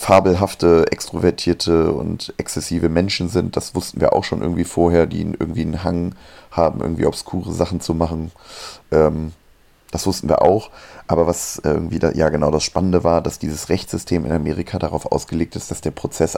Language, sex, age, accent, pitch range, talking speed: German, male, 30-49, German, 80-90 Hz, 170 wpm